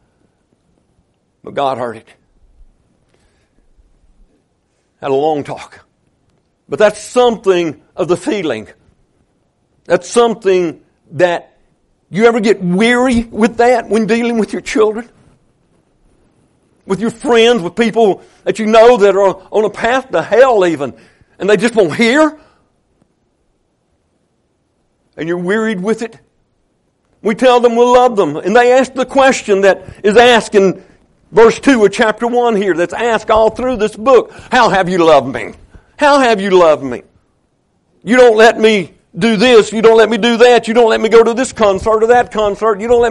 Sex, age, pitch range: male, 60-79, 200-245 Hz